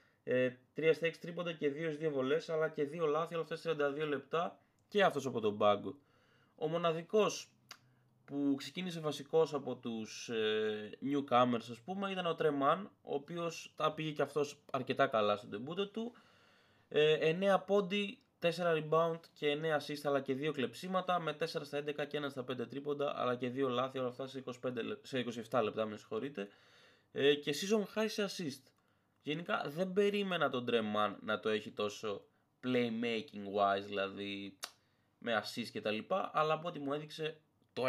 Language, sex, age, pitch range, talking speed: Greek, male, 20-39, 120-170 Hz, 165 wpm